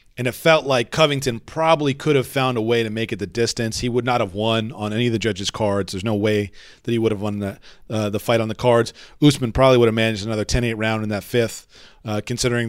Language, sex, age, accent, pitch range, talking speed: English, male, 40-59, American, 110-130 Hz, 260 wpm